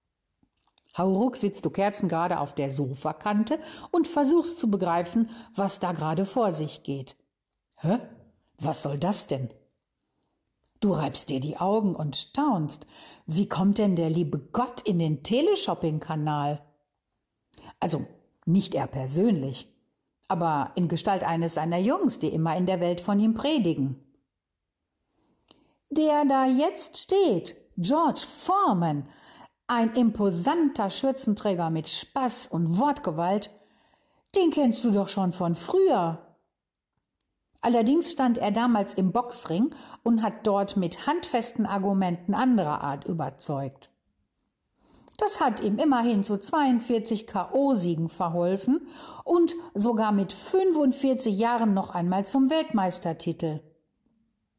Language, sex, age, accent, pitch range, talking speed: German, female, 60-79, German, 165-245 Hz, 120 wpm